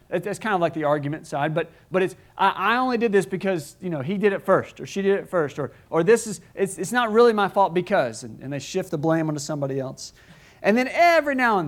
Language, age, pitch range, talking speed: English, 40-59, 135-180 Hz, 265 wpm